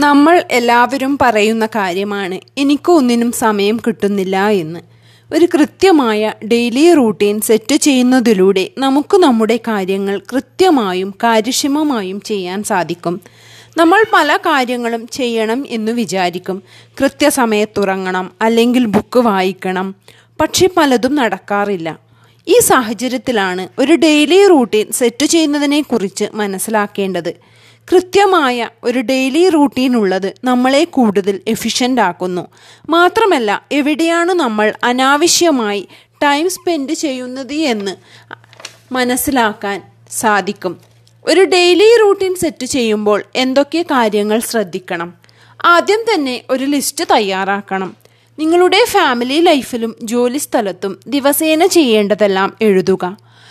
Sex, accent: female, native